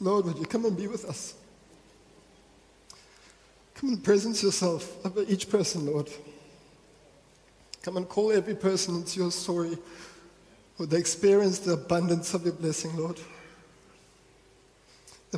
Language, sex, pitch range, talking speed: English, male, 165-200 Hz, 135 wpm